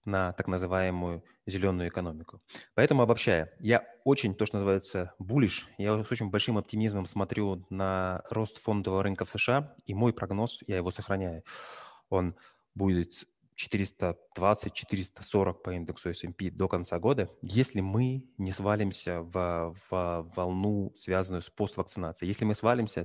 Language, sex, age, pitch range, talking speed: Russian, male, 20-39, 90-105 Hz, 140 wpm